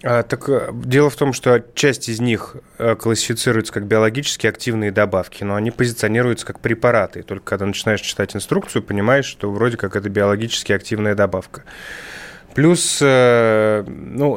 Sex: male